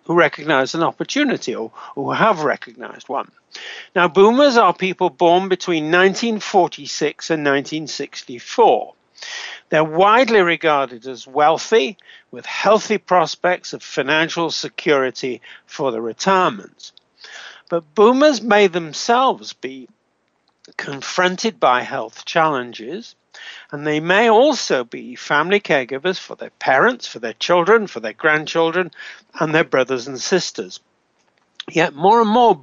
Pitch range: 145-200 Hz